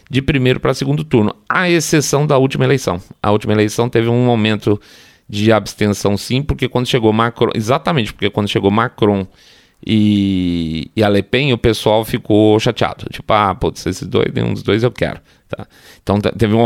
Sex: male